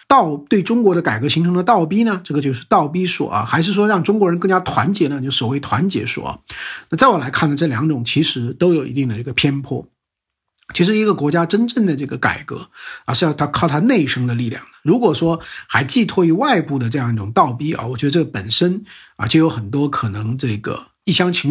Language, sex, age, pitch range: Chinese, male, 50-69, 135-180 Hz